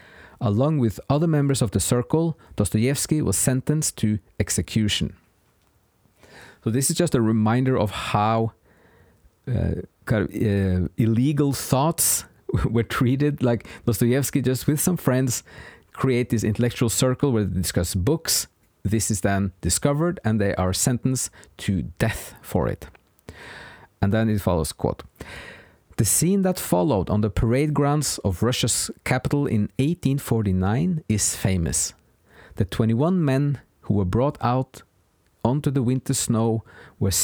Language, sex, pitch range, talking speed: English, male, 105-135 Hz, 135 wpm